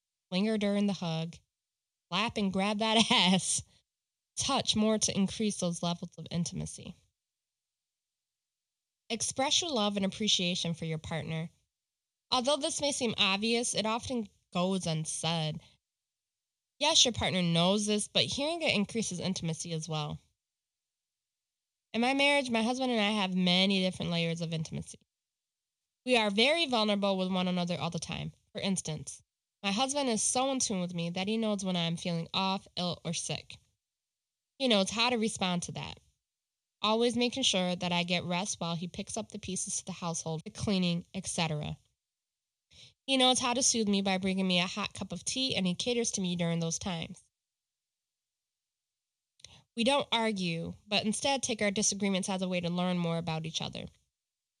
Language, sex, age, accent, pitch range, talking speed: English, female, 20-39, American, 170-220 Hz, 170 wpm